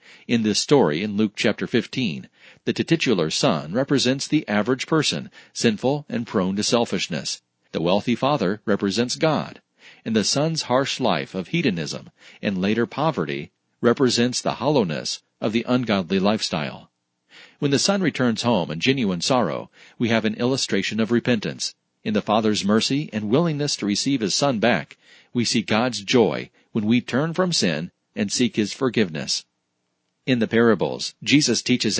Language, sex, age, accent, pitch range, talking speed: English, male, 40-59, American, 105-130 Hz, 160 wpm